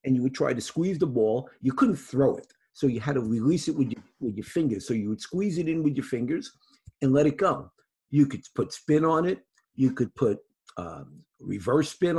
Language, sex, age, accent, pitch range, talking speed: English, male, 50-69, American, 125-155 Hz, 235 wpm